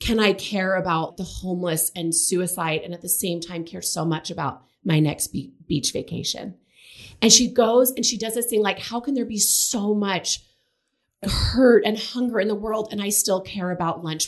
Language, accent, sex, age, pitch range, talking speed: English, American, female, 30-49, 165-210 Hz, 200 wpm